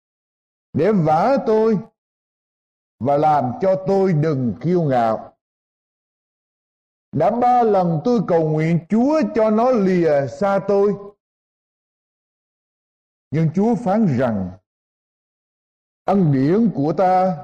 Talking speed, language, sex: 105 wpm, Vietnamese, male